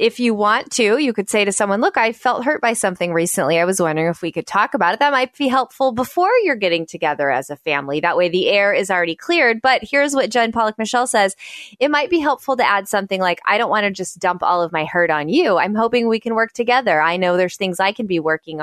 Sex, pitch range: female, 175-235 Hz